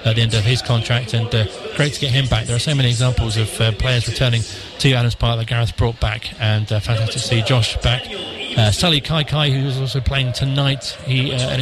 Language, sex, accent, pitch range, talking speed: English, male, British, 115-130 Hz, 245 wpm